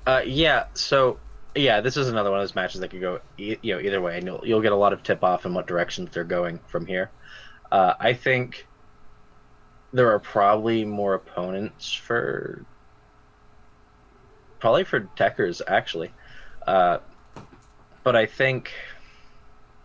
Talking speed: 155 wpm